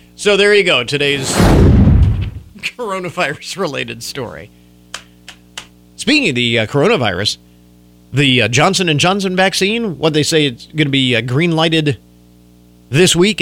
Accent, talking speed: American, 130 wpm